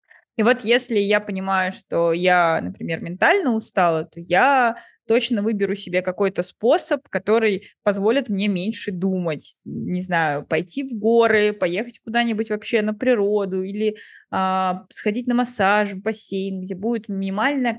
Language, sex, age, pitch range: Russian, female, 20-39, 190-230 Hz